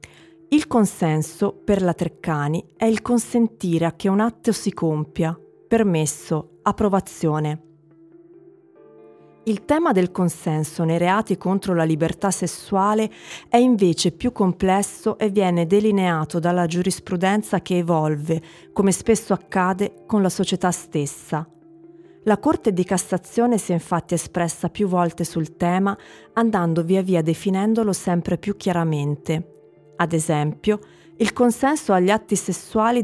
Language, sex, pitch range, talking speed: Italian, female, 165-210 Hz, 125 wpm